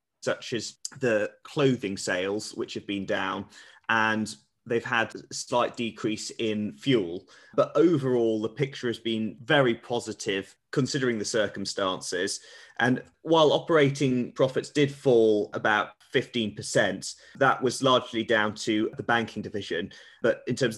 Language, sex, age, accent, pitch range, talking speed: English, male, 20-39, British, 105-125 Hz, 135 wpm